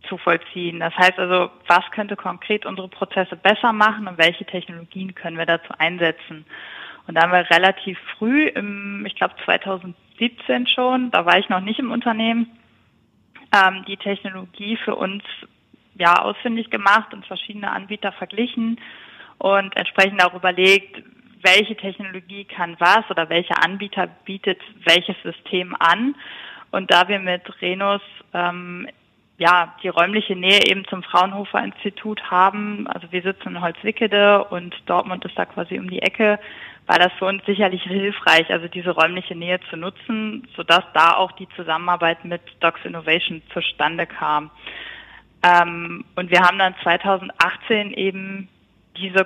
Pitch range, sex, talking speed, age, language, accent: 175-210 Hz, female, 145 wpm, 20-39, German, German